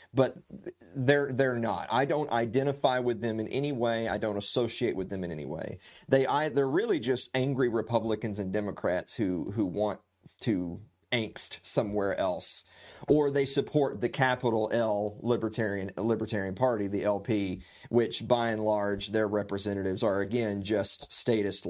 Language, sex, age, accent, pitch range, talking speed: English, male, 30-49, American, 100-135 Hz, 155 wpm